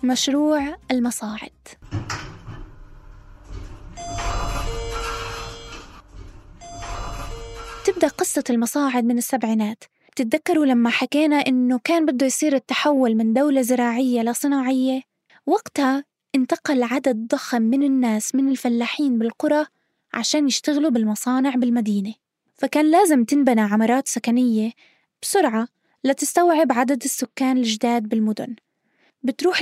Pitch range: 230-290 Hz